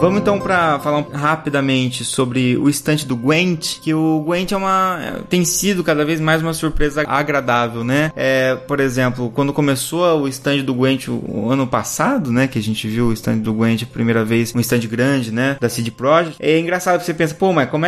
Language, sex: Portuguese, male